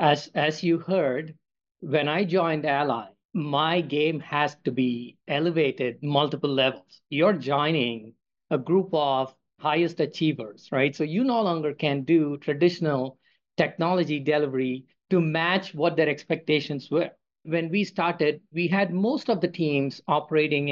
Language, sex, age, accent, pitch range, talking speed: English, male, 50-69, Indian, 140-175 Hz, 140 wpm